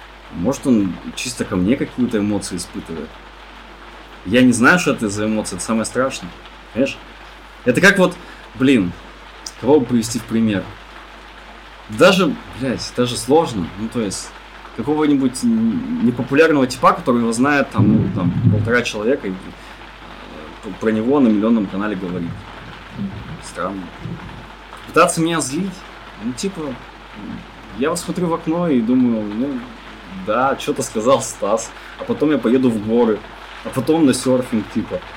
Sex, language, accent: male, Russian, native